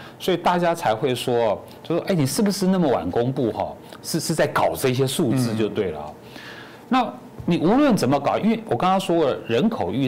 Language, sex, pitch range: Chinese, male, 110-165 Hz